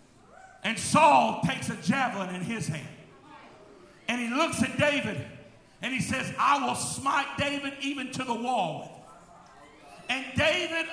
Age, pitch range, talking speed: 40-59, 245-275 Hz, 145 wpm